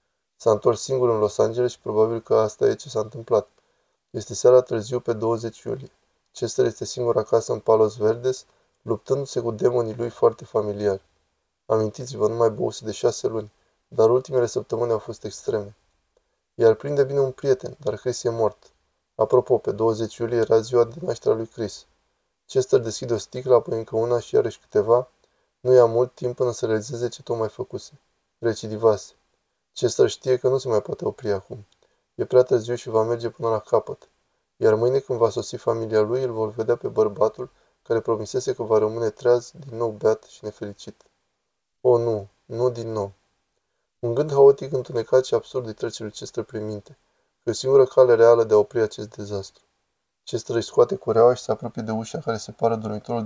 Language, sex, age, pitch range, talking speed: Romanian, male, 20-39, 110-130 Hz, 185 wpm